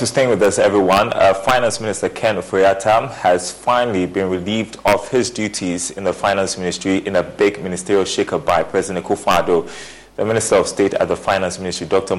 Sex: male